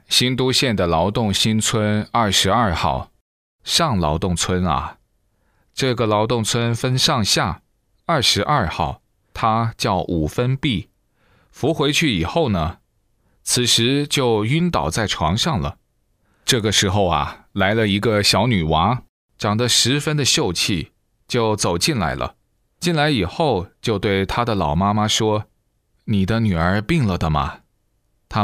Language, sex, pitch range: Chinese, male, 95-120 Hz